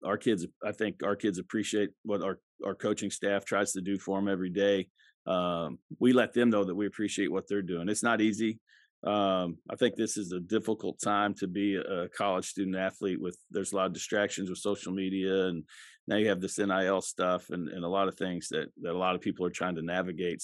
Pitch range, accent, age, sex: 95-115 Hz, American, 40-59, male